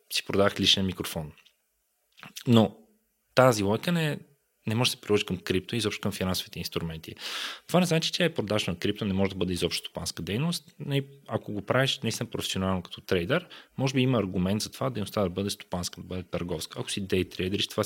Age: 20-39